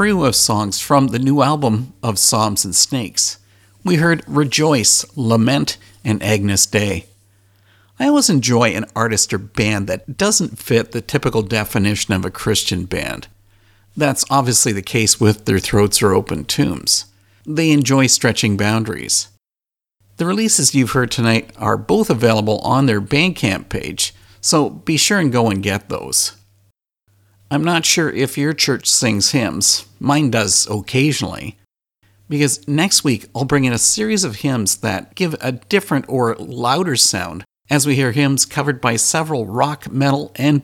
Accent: American